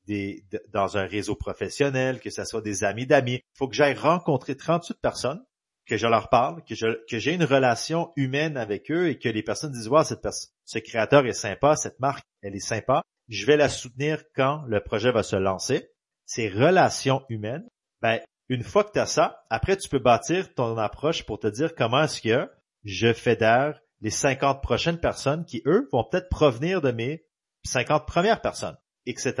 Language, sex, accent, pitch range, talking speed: French, male, Canadian, 105-140 Hz, 195 wpm